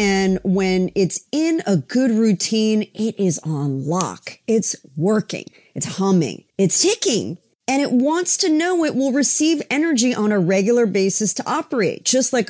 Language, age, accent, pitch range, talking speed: English, 40-59, American, 175-245 Hz, 165 wpm